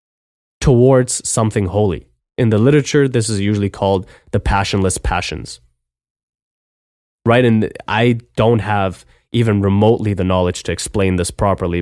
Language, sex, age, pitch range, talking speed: English, male, 20-39, 85-110 Hz, 130 wpm